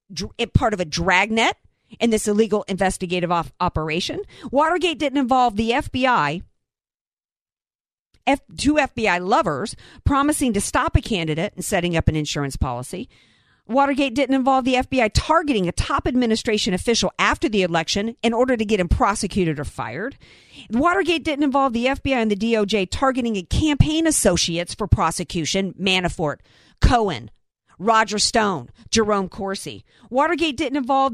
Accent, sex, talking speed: American, female, 135 wpm